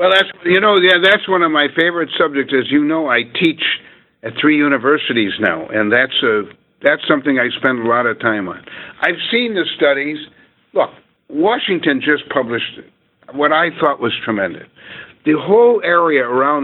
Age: 60-79